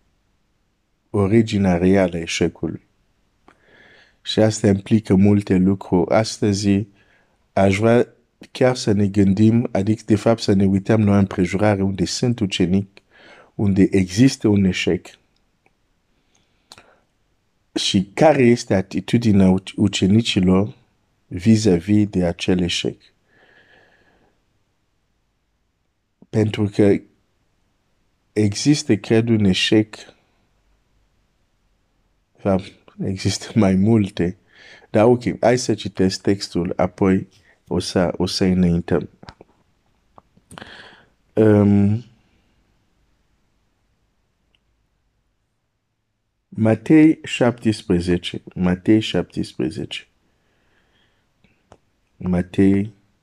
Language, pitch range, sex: Romanian, 95-110 Hz, male